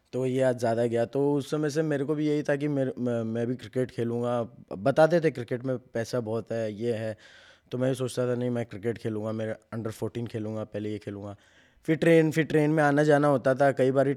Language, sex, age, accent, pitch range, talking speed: English, male, 20-39, Indian, 115-140 Hz, 235 wpm